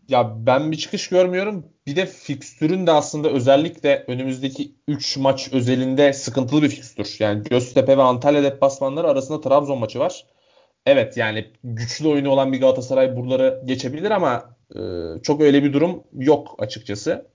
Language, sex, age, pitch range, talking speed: Turkish, male, 30-49, 130-155 Hz, 155 wpm